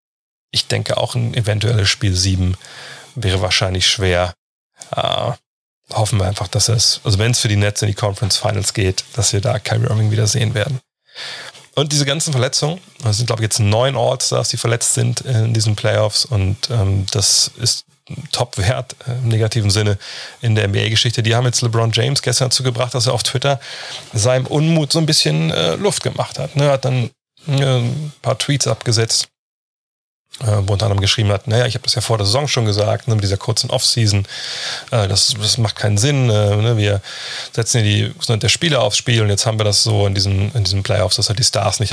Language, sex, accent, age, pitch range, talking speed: German, male, German, 30-49, 105-130 Hz, 210 wpm